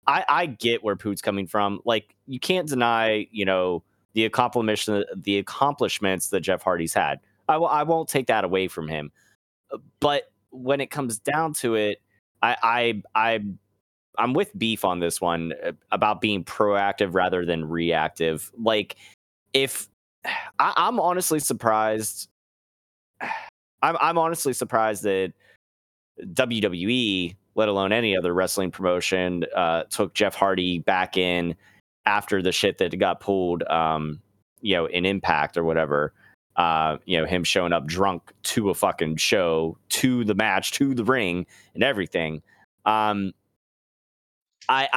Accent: American